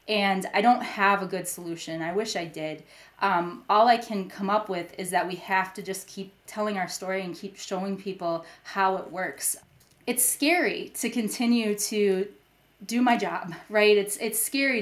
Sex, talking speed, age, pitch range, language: female, 190 wpm, 20-39, 180-210 Hz, English